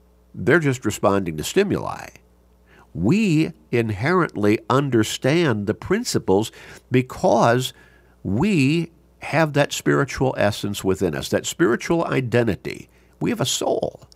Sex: male